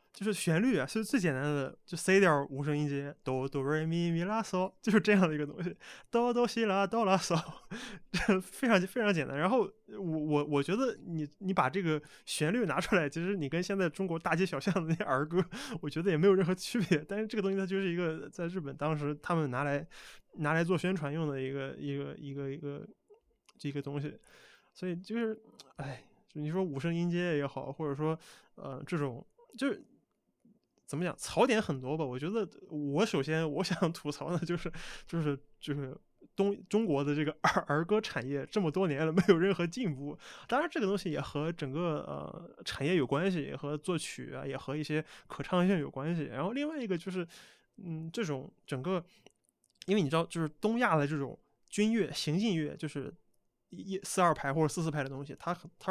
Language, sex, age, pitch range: Chinese, male, 20-39, 145-195 Hz